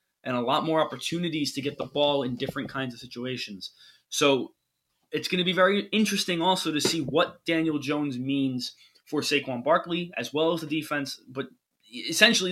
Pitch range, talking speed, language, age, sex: 130-170 Hz, 180 wpm, English, 20-39, male